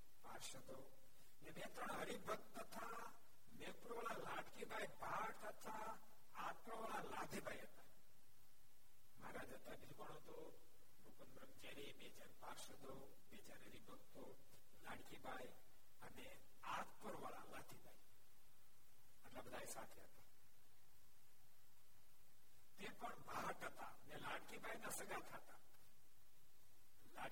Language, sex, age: Gujarati, male, 60-79